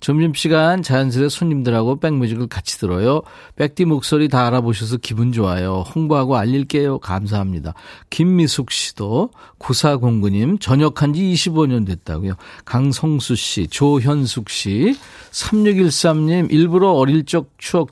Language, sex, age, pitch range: Korean, male, 40-59, 115-160 Hz